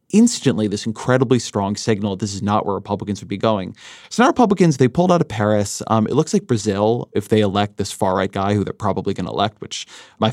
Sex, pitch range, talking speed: male, 105-135 Hz, 230 wpm